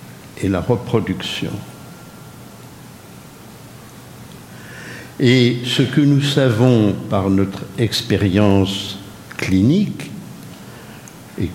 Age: 60-79